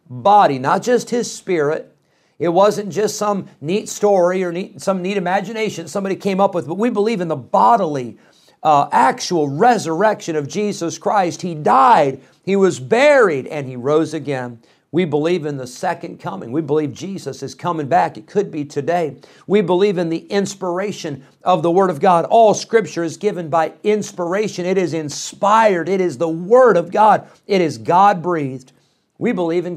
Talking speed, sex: 175 wpm, male